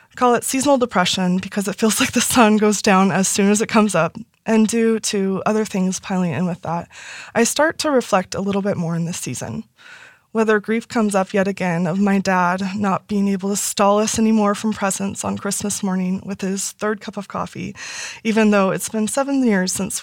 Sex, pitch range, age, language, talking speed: female, 185-215 Hz, 20-39, English, 215 wpm